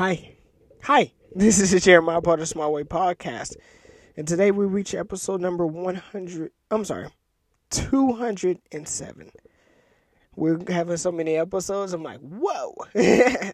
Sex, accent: male, American